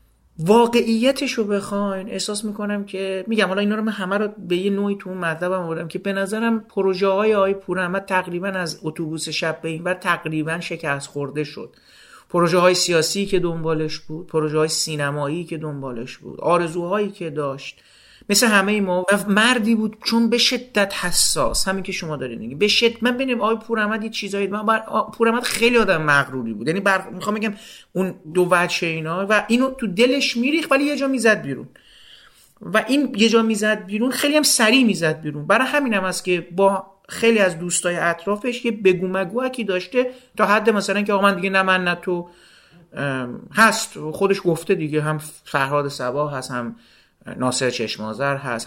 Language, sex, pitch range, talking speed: Persian, male, 165-215 Hz, 175 wpm